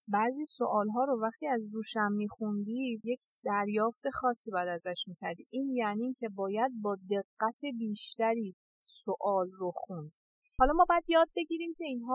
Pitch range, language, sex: 215-275 Hz, Persian, female